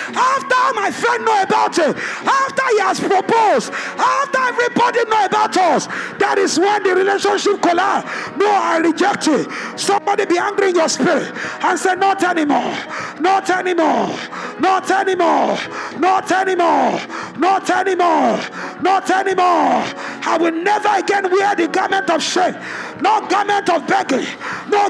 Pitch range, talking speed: 355-415 Hz, 150 wpm